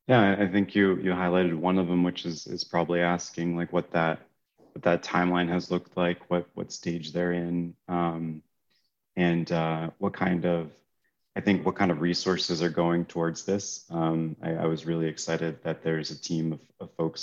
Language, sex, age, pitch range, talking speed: English, male, 30-49, 80-90 Hz, 200 wpm